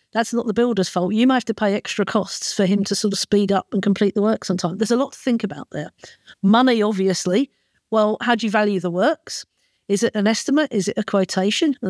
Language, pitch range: English, 200-240 Hz